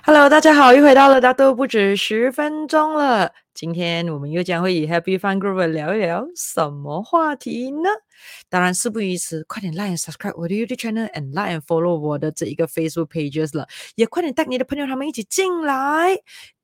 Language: Chinese